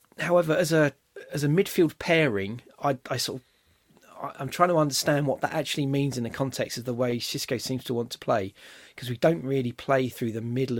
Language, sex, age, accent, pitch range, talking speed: English, male, 30-49, British, 120-145 Hz, 215 wpm